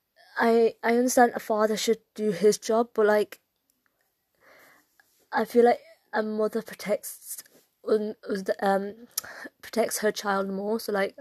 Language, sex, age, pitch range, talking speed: Urdu, female, 20-39, 205-235 Hz, 130 wpm